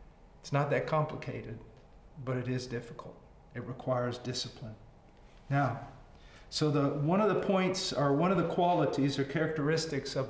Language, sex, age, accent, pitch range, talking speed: English, male, 50-69, American, 135-175 Hz, 150 wpm